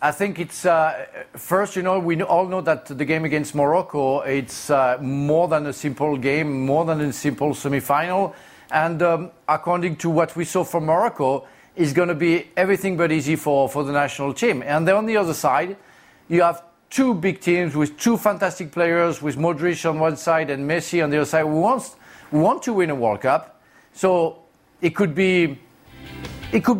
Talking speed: 195 wpm